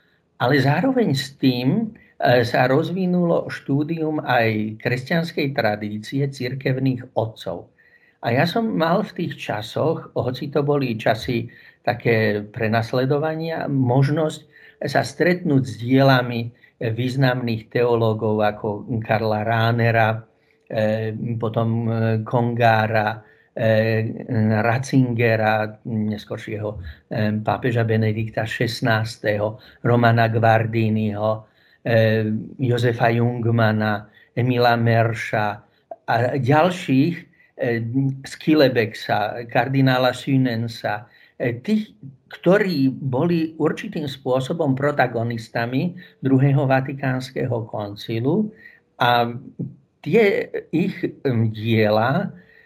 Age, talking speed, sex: 50-69, 75 wpm, male